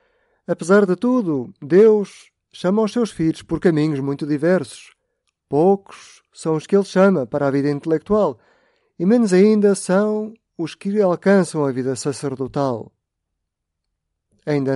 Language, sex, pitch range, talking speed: Portuguese, male, 130-180 Hz, 135 wpm